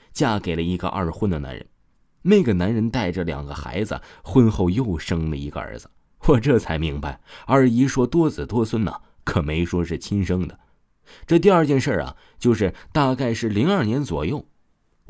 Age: 20-39